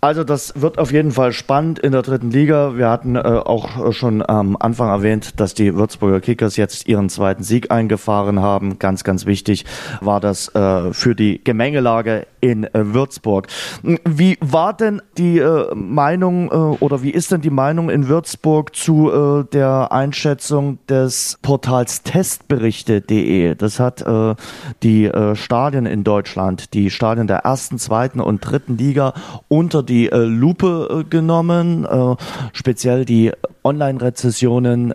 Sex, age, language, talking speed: male, 30-49, German, 155 wpm